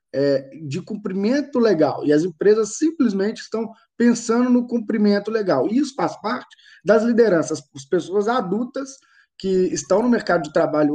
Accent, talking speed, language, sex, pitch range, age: Brazilian, 150 wpm, Portuguese, male, 160-230 Hz, 20-39